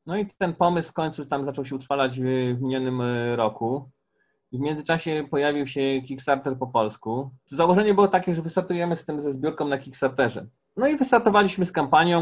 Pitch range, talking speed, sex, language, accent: 125-150 Hz, 180 wpm, male, Polish, native